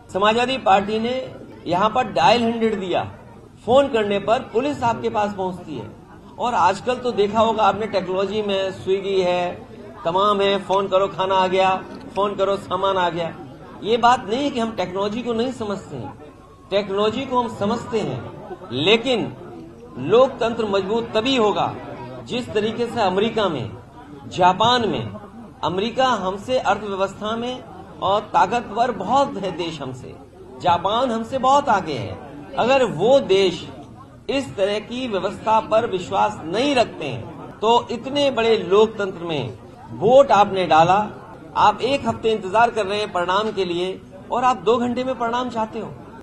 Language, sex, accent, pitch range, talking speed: Hindi, male, native, 185-230 Hz, 155 wpm